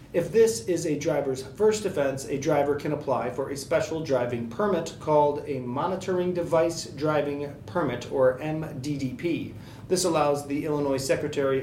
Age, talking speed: 30-49, 150 wpm